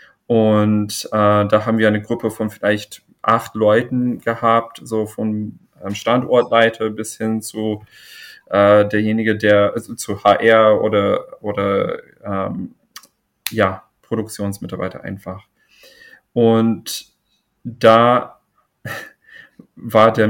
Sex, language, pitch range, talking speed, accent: male, German, 105-115 Hz, 100 wpm, German